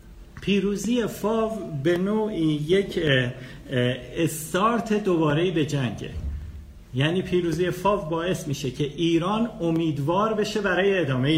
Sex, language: male, Persian